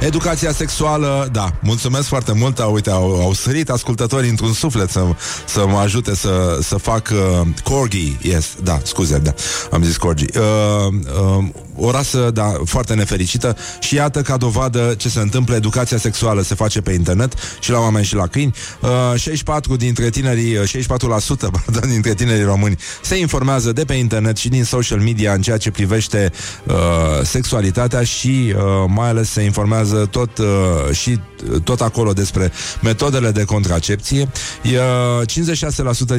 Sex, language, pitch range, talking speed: male, Romanian, 95-125 Hz, 155 wpm